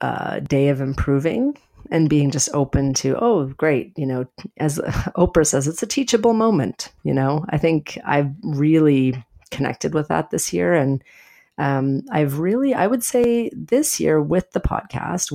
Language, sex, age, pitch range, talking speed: English, female, 40-59, 135-170 Hz, 170 wpm